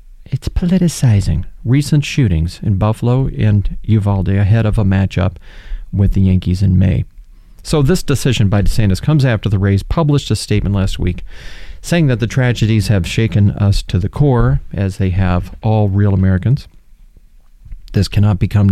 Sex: male